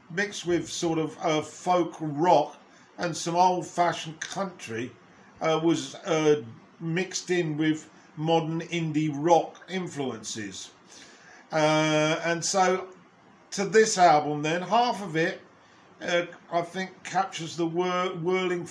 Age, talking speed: 50-69, 120 wpm